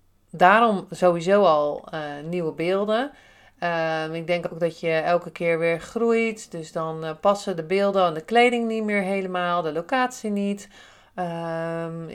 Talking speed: 160 wpm